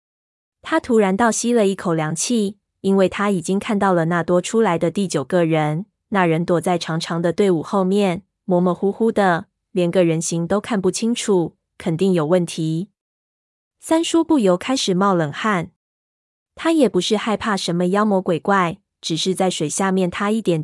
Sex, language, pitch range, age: female, Chinese, 175-210 Hz, 20-39